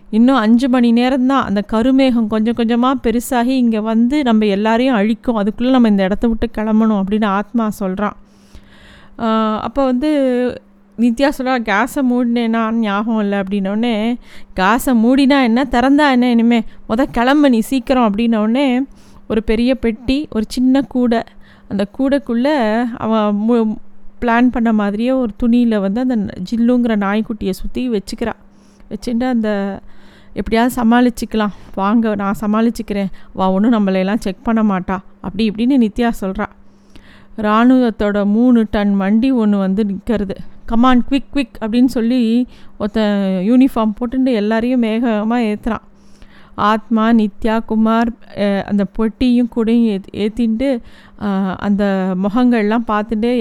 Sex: female